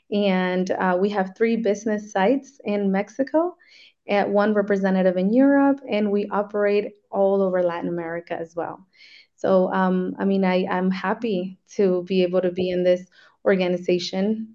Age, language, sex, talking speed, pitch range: 20-39, English, female, 155 wpm, 185-205 Hz